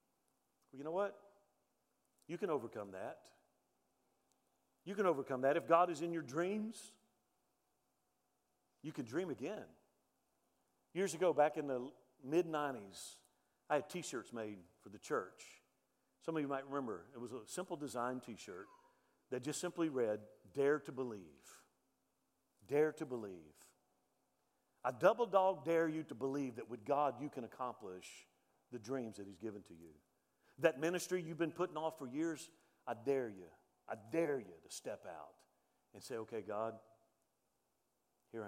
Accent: American